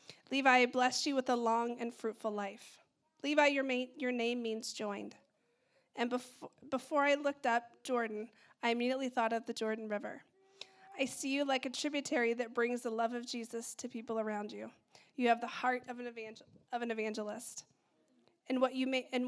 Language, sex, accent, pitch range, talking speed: English, female, American, 225-255 Hz, 170 wpm